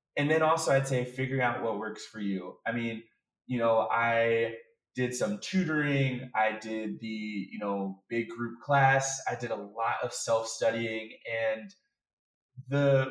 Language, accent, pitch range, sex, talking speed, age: English, American, 110-135 Hz, male, 160 wpm, 20-39